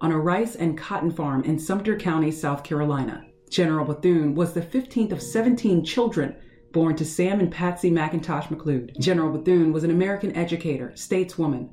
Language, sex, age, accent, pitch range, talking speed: English, female, 30-49, American, 150-180 Hz, 165 wpm